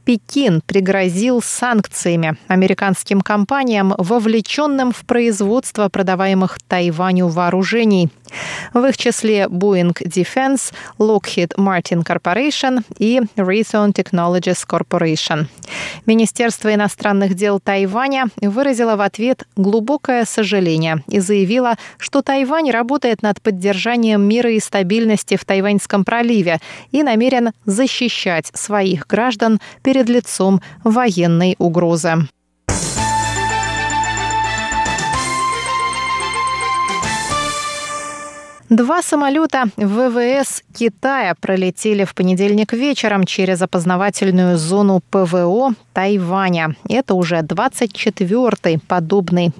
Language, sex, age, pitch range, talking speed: Russian, female, 20-39, 185-240 Hz, 85 wpm